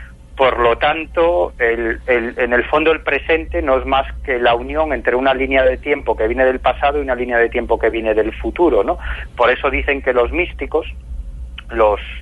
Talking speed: 205 wpm